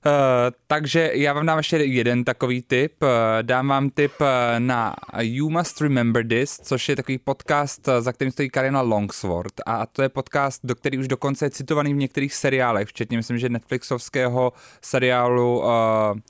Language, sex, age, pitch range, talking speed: Czech, male, 20-39, 115-140 Hz, 160 wpm